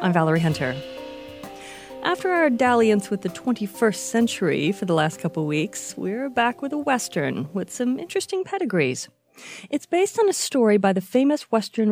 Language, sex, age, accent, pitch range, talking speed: English, female, 40-59, American, 175-260 Hz, 165 wpm